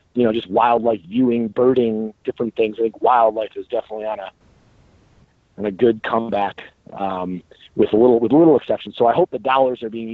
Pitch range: 105-125 Hz